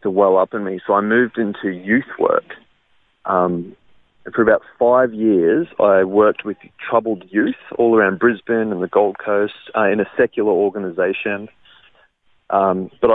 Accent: Australian